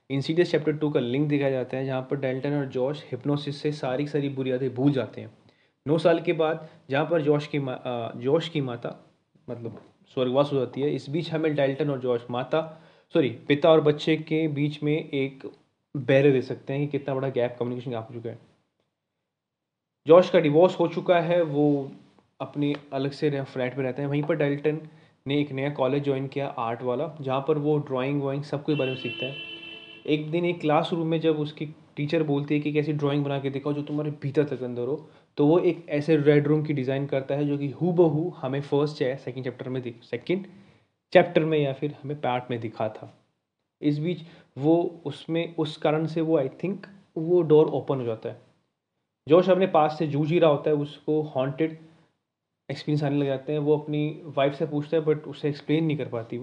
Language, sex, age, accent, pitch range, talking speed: Hindi, male, 30-49, native, 135-155 Hz, 210 wpm